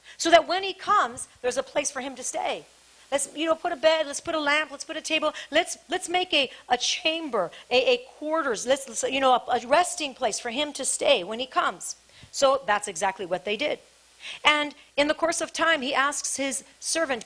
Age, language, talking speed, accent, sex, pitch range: 40-59, English, 230 wpm, American, female, 200-290 Hz